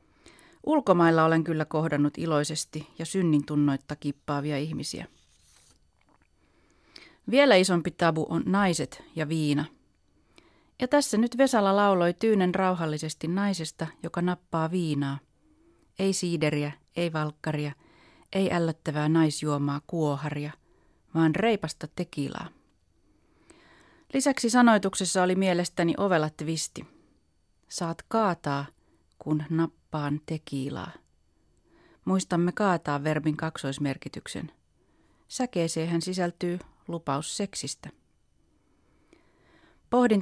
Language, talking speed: Finnish, 90 wpm